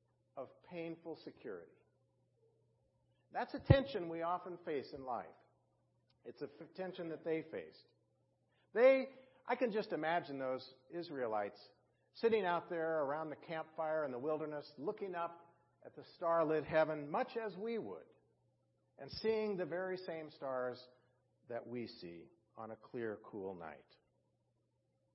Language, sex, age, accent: English, male, 50-69, American